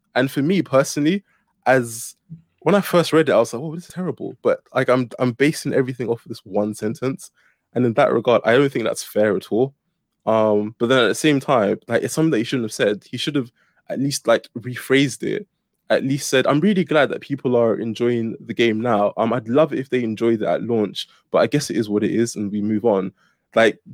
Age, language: 20-39, English